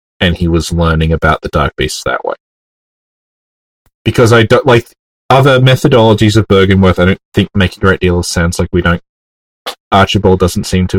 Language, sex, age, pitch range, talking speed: English, male, 30-49, 75-100 Hz, 185 wpm